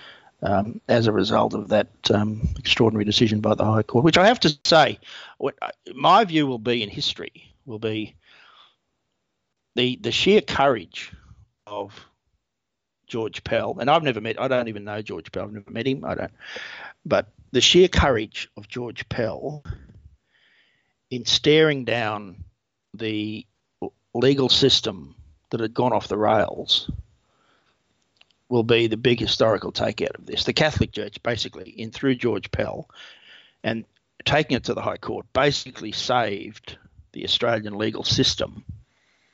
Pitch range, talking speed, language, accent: 110-130 Hz, 150 wpm, English, Australian